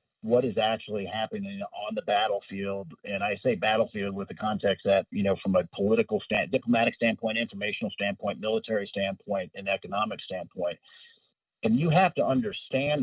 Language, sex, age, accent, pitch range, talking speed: English, male, 50-69, American, 100-135 Hz, 160 wpm